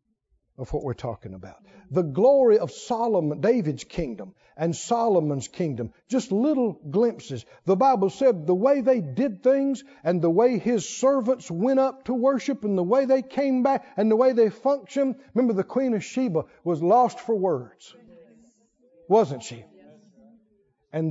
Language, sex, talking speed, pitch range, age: English, male, 160 wpm, 170-250 Hz, 60-79